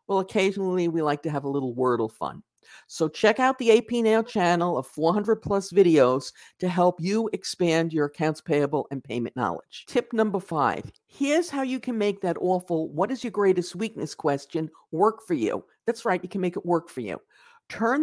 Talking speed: 200 wpm